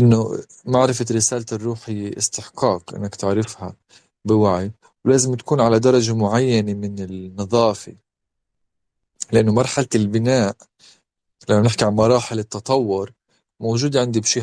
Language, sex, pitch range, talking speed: Arabic, male, 110-130 Hz, 110 wpm